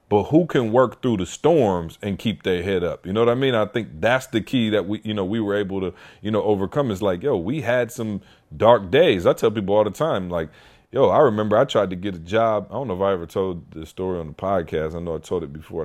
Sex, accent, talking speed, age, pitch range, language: male, American, 285 wpm, 30-49, 95-115 Hz, English